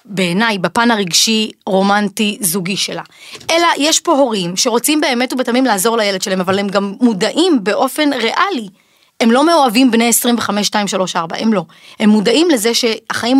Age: 20-39